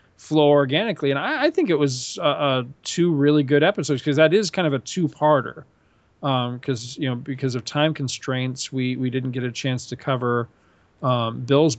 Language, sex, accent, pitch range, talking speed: English, male, American, 125-150 Hz, 200 wpm